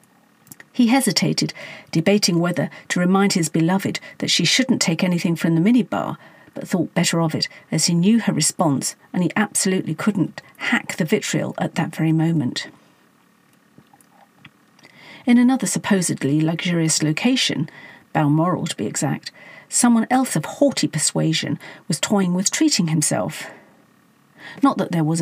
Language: English